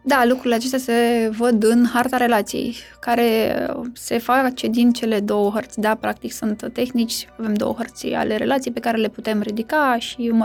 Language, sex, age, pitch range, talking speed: Romanian, female, 20-39, 225-270 Hz, 180 wpm